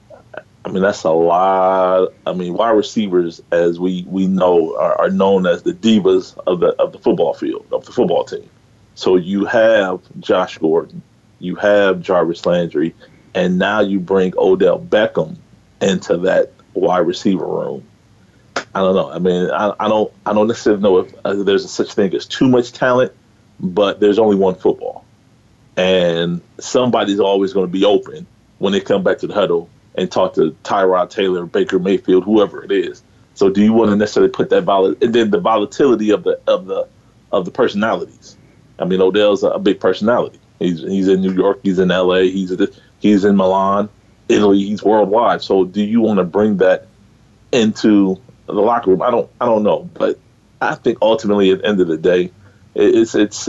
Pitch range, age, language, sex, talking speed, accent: 95-120 Hz, 30-49, English, male, 190 wpm, American